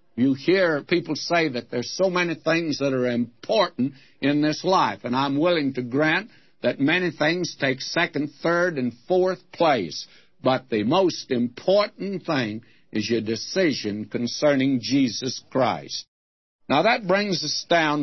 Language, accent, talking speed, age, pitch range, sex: English, American, 150 wpm, 60-79, 130-175 Hz, male